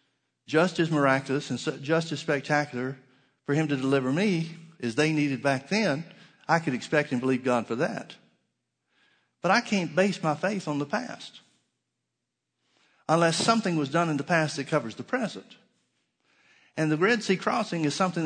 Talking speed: 170 wpm